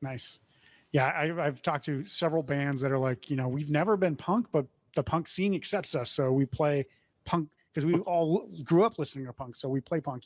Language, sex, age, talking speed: English, male, 30-49, 230 wpm